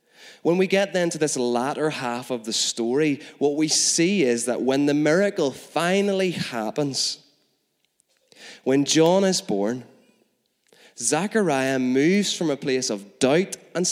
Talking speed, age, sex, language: 140 wpm, 20-39, male, English